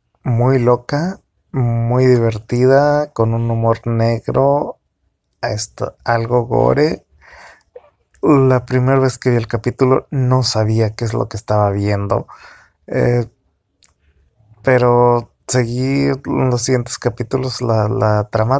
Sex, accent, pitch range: male, Mexican, 110-130 Hz